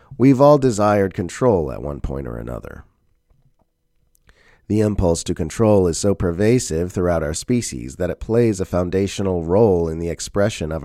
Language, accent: English, American